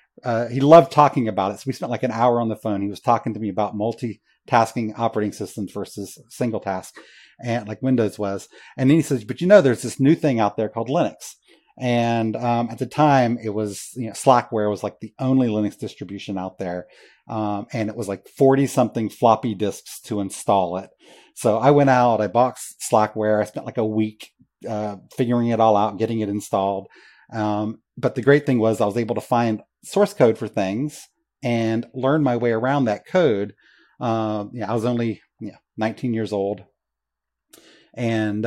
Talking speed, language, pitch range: 200 wpm, English, 105-125 Hz